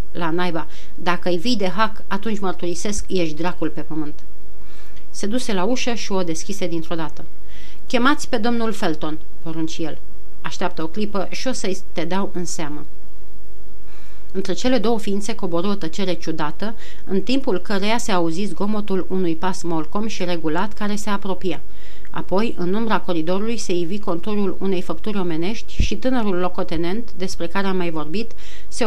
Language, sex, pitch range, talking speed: Romanian, female, 175-220 Hz, 160 wpm